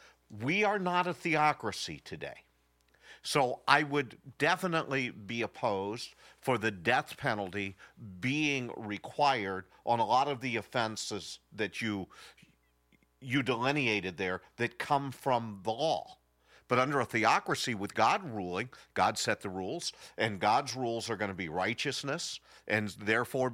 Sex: male